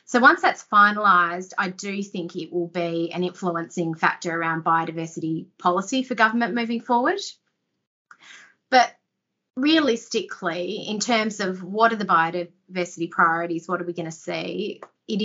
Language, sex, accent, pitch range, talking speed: English, female, Australian, 170-200 Hz, 145 wpm